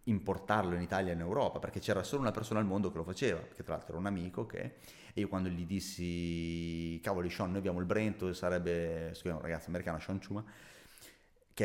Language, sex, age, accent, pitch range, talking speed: Italian, male, 30-49, native, 90-120 Hz, 205 wpm